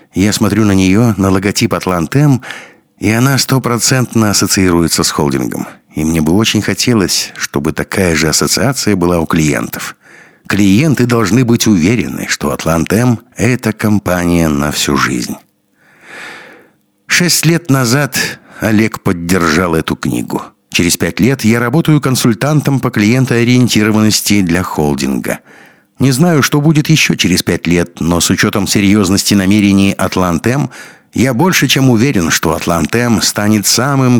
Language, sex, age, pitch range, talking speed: Russian, male, 60-79, 90-125 Hz, 130 wpm